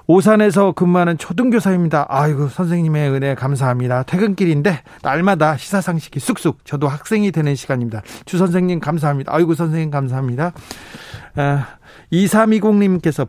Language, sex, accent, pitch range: Korean, male, native, 140-185 Hz